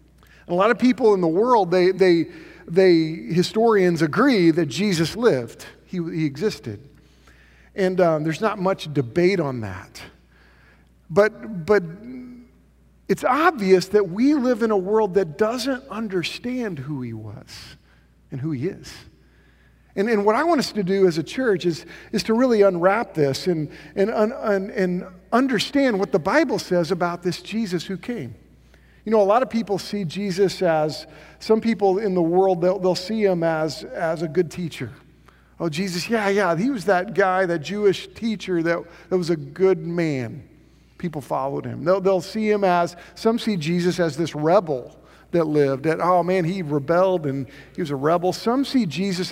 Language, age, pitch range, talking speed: English, 50-69, 160-205 Hz, 180 wpm